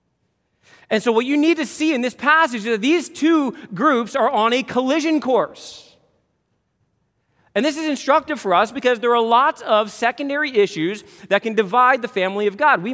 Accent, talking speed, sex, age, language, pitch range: American, 190 wpm, male, 40-59, English, 185-255 Hz